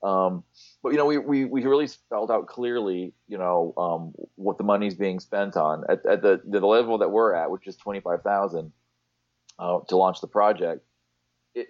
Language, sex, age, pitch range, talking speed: English, male, 30-49, 80-120 Hz, 195 wpm